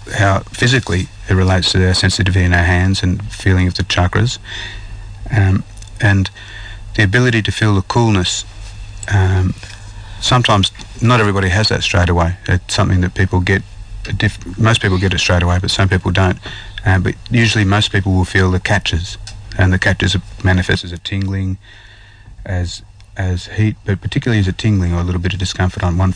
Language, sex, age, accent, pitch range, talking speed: English, male, 30-49, Australian, 95-105 Hz, 185 wpm